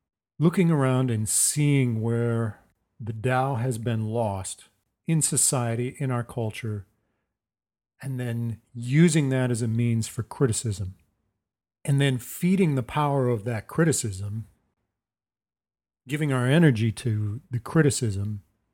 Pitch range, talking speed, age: 105-135 Hz, 120 wpm, 40-59